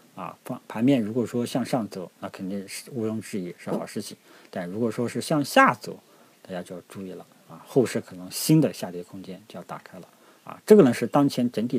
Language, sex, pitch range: Chinese, male, 105-150 Hz